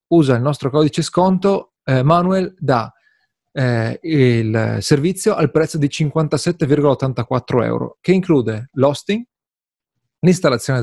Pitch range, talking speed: 125-170 Hz, 110 wpm